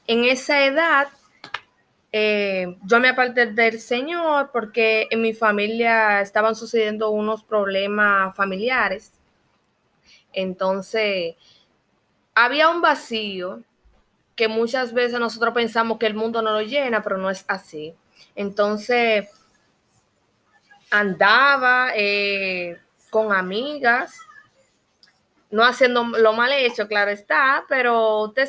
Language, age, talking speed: Spanish, 20-39, 105 wpm